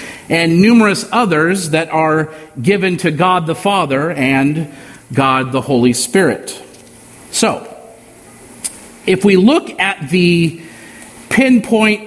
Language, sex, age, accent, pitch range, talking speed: English, male, 50-69, American, 155-205 Hz, 110 wpm